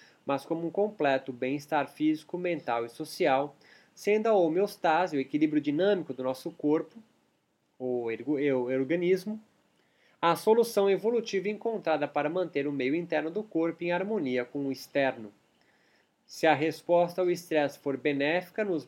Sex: male